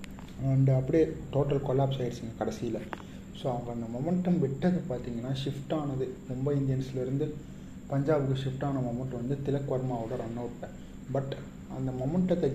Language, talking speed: Tamil, 130 wpm